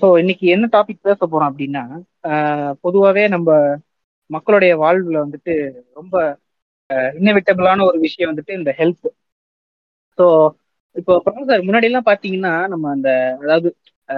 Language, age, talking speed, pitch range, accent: Tamil, 20-39, 115 wpm, 145-200 Hz, native